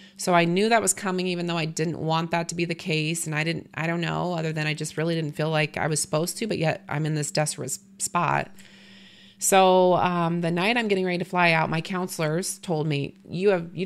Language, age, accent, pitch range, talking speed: English, 30-49, American, 155-190 Hz, 250 wpm